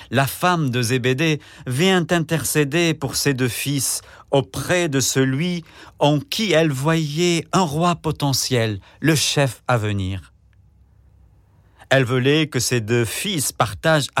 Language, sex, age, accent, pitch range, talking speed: French, male, 50-69, French, 100-150 Hz, 130 wpm